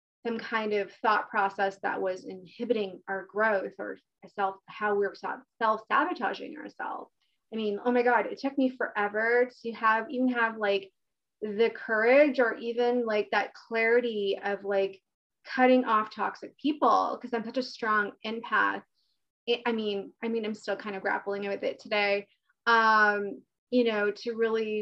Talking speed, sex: 160 wpm, female